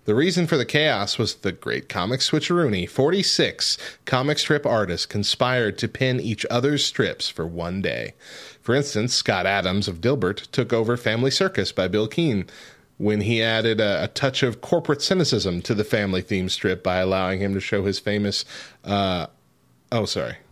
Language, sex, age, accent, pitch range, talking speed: English, male, 30-49, American, 100-125 Hz, 175 wpm